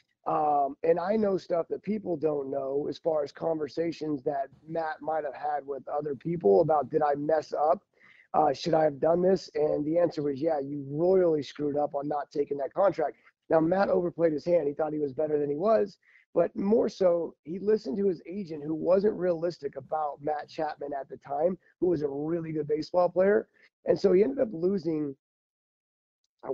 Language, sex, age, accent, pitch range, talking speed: English, male, 30-49, American, 150-185 Hz, 205 wpm